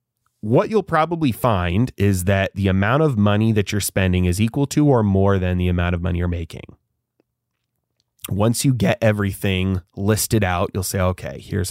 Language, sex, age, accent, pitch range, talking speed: English, male, 30-49, American, 90-110 Hz, 180 wpm